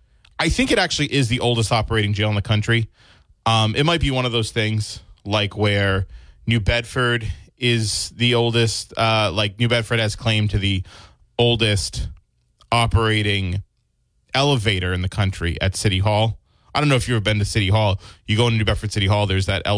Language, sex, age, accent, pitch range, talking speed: English, male, 20-39, American, 95-115 Hz, 190 wpm